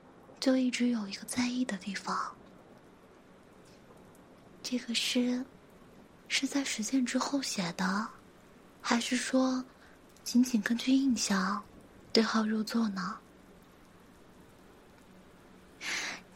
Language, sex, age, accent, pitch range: Chinese, female, 20-39, native, 215-250 Hz